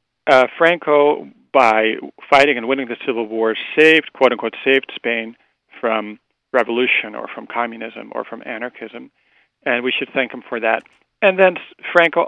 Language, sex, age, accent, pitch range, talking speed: English, male, 40-59, American, 115-145 Hz, 150 wpm